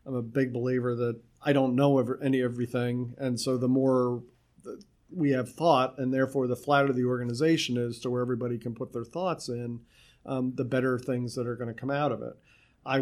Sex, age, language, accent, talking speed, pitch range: male, 40-59, English, American, 205 wpm, 125-140 Hz